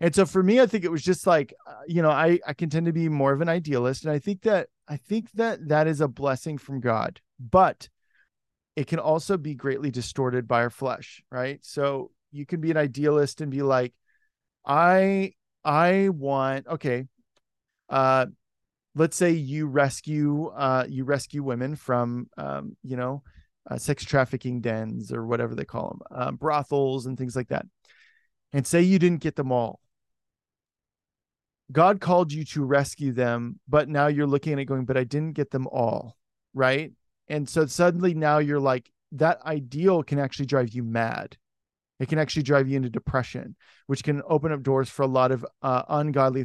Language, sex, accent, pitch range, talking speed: English, male, American, 130-160 Hz, 185 wpm